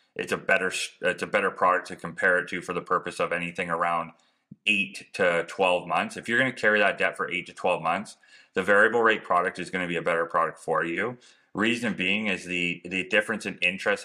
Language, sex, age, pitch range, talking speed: English, male, 30-49, 85-95 Hz, 220 wpm